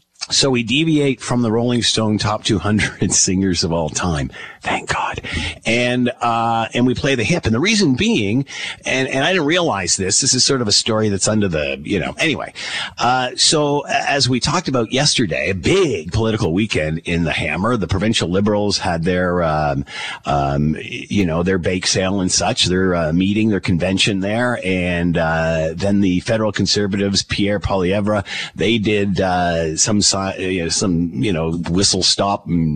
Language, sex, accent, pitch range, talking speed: English, male, American, 90-120 Hz, 185 wpm